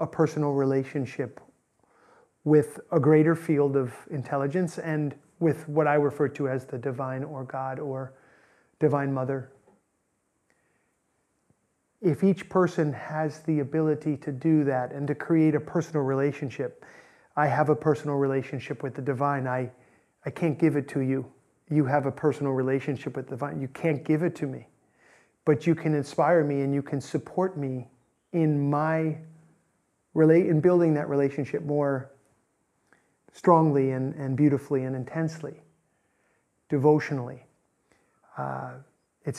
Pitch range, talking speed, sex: 135-155 Hz, 140 wpm, male